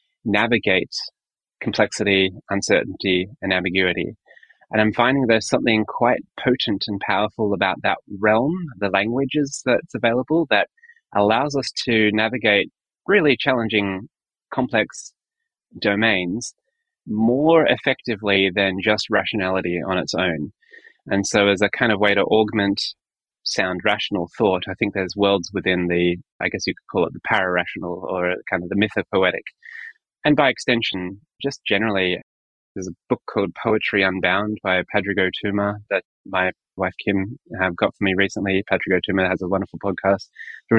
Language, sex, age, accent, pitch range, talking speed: English, male, 20-39, Australian, 95-115 Hz, 145 wpm